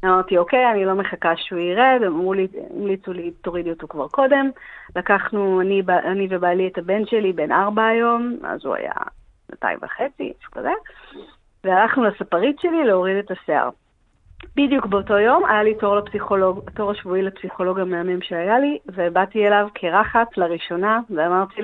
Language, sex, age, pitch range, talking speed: Hebrew, female, 40-59, 185-230 Hz, 145 wpm